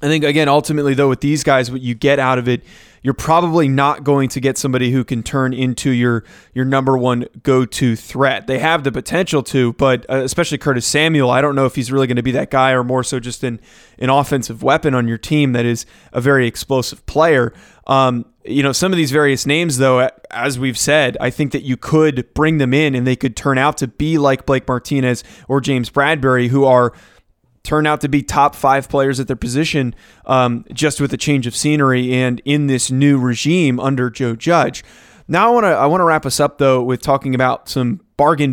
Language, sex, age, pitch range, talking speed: English, male, 20-39, 130-150 Hz, 225 wpm